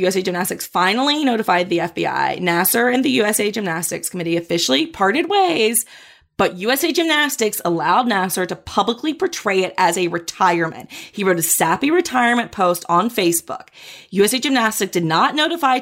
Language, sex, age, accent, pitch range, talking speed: English, female, 30-49, American, 185-305 Hz, 150 wpm